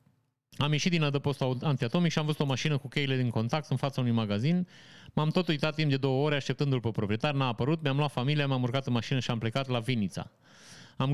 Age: 30-49